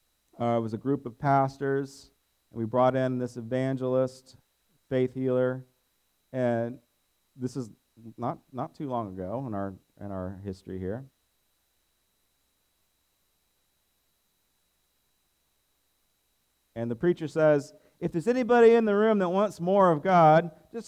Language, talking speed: English, 125 wpm